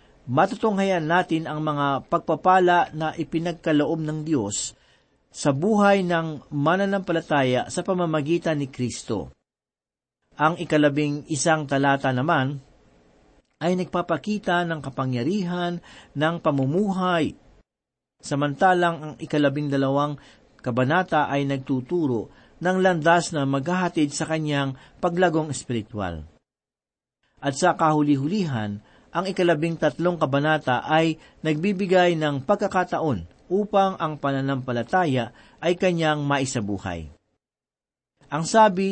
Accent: native